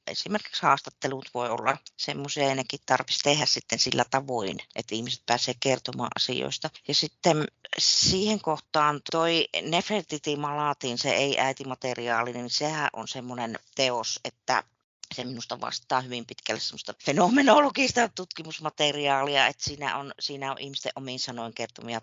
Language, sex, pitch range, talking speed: Finnish, female, 125-155 Hz, 135 wpm